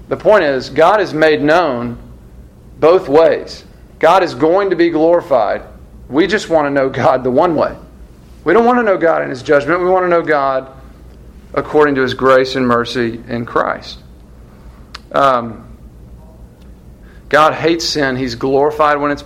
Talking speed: 170 wpm